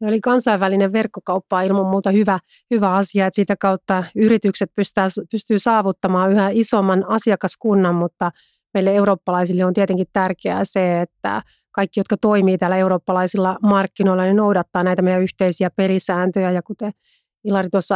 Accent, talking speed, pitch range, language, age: native, 145 wpm, 185-210 Hz, Finnish, 30-49